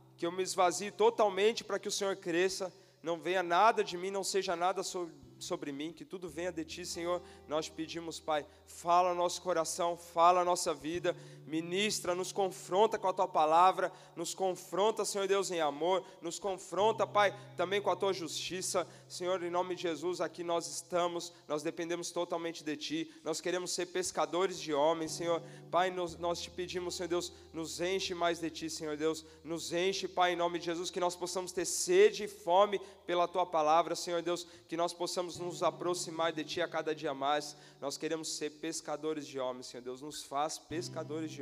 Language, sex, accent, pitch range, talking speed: Portuguese, male, Brazilian, 150-180 Hz, 195 wpm